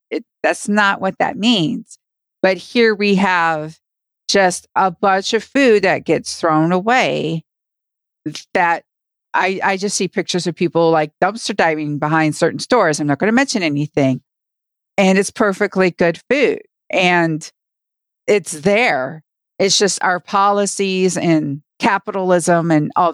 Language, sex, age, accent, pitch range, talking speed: English, female, 50-69, American, 175-220 Hz, 140 wpm